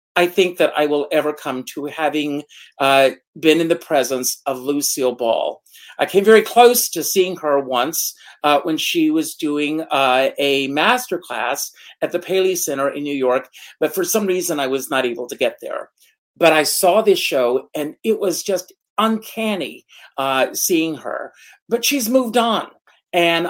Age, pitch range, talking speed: 50-69, 145-210 Hz, 180 wpm